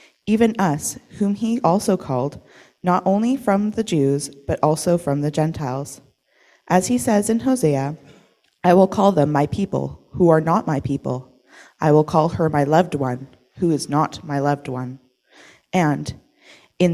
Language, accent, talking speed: English, American, 165 wpm